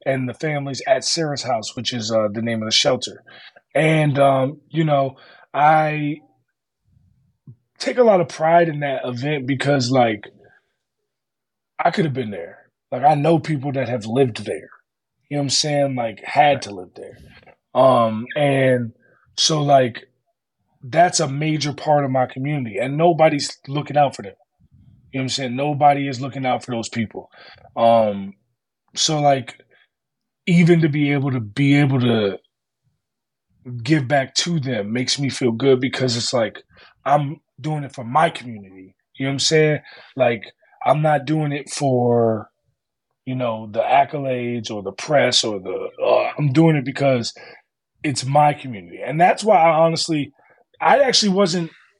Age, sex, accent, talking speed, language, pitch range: 20-39, male, American, 165 wpm, English, 125-155 Hz